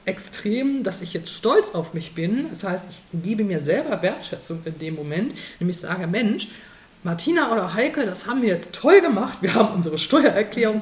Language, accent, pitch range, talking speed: German, German, 170-225 Hz, 190 wpm